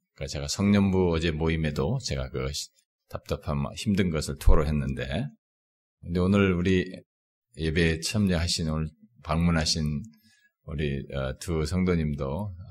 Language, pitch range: Korean, 75-90 Hz